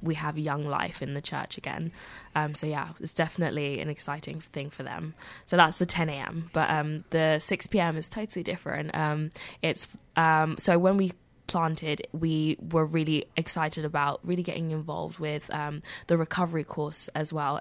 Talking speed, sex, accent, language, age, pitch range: 180 wpm, female, British, English, 10-29, 150-165 Hz